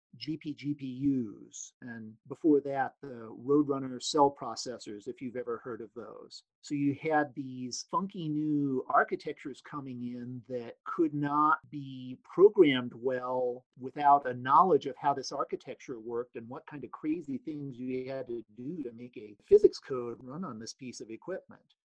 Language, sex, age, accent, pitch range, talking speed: English, male, 40-59, American, 125-170 Hz, 160 wpm